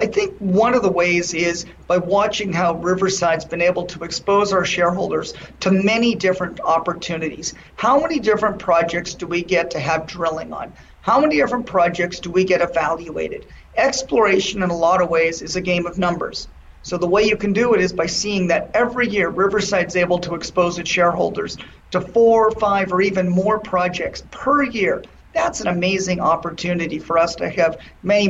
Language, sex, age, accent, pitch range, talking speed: English, male, 40-59, American, 170-200 Hz, 190 wpm